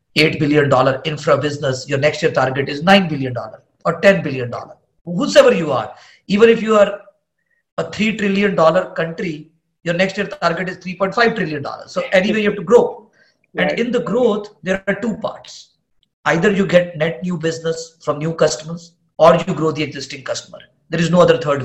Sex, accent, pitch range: male, Indian, 150-190 Hz